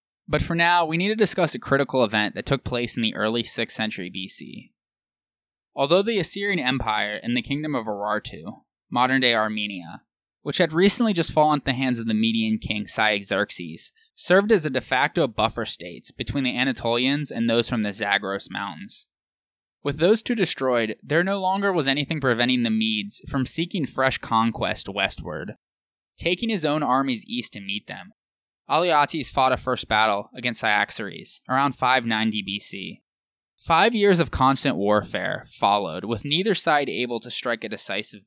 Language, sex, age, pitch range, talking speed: English, male, 10-29, 105-155 Hz, 170 wpm